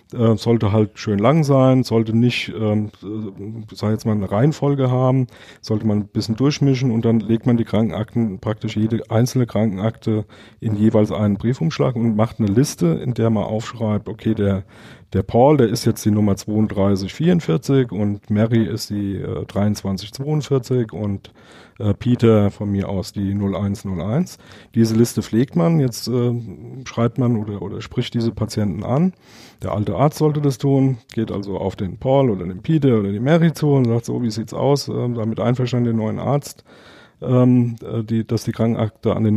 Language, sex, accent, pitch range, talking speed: German, male, German, 105-130 Hz, 180 wpm